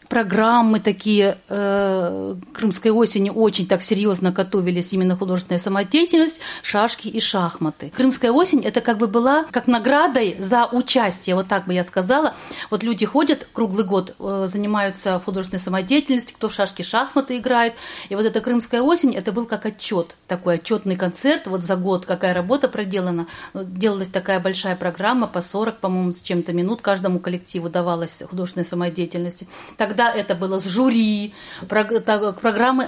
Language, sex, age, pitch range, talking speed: Russian, female, 40-59, 190-235 Hz, 150 wpm